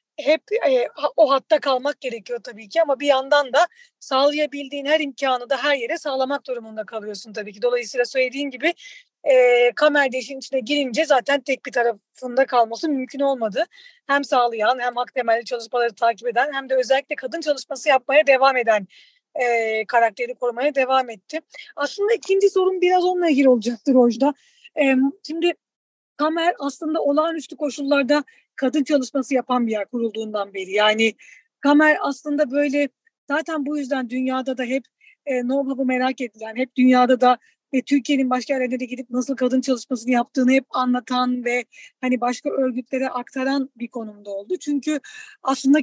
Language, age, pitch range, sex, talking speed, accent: Turkish, 40-59, 245-295 Hz, female, 155 wpm, native